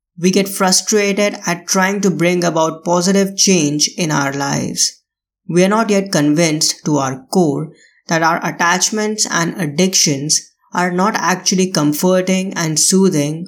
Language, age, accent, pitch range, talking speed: English, 20-39, Indian, 155-195 Hz, 140 wpm